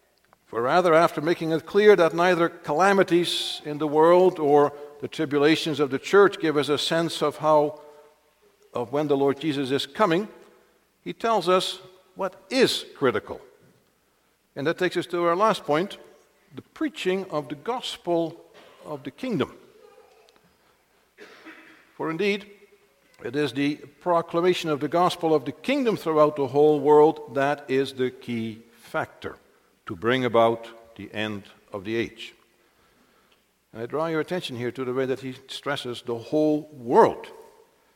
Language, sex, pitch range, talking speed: English, male, 140-185 Hz, 155 wpm